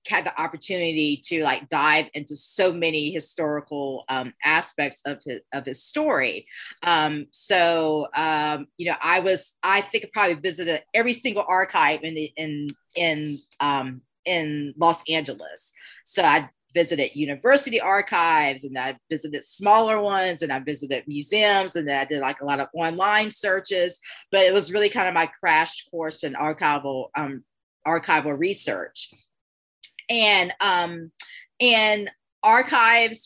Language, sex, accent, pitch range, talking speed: English, female, American, 155-205 Hz, 150 wpm